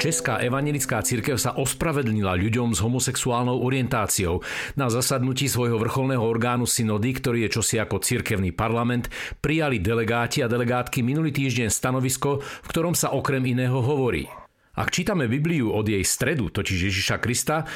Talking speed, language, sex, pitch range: 145 wpm, Slovak, male, 105-140 Hz